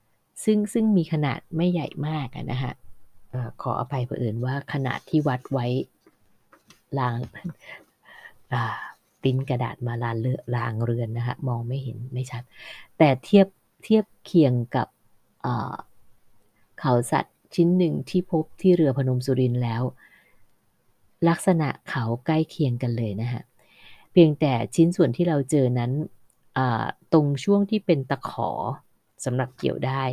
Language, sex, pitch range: Thai, female, 125-160 Hz